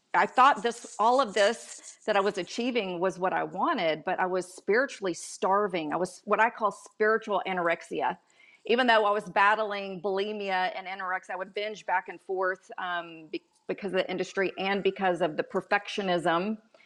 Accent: American